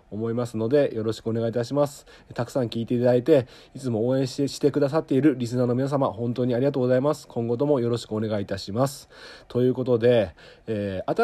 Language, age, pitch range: Japanese, 40-59, 110-140 Hz